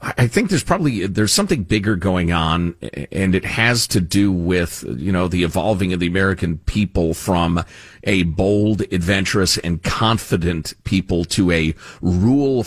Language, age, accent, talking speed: English, 40-59, American, 155 wpm